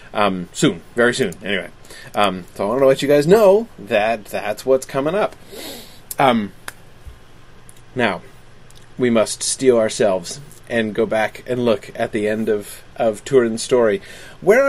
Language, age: English, 30-49